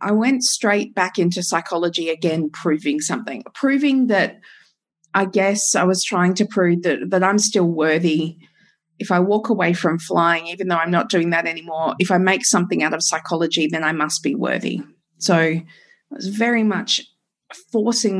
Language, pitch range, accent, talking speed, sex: English, 165-205 Hz, Australian, 180 wpm, female